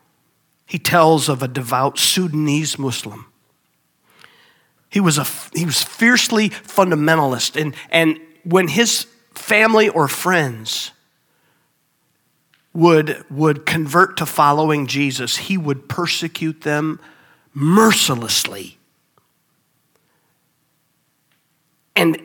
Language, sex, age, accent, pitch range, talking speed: English, male, 50-69, American, 160-250 Hz, 90 wpm